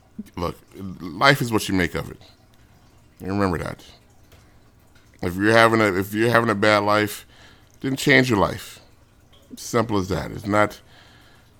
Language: English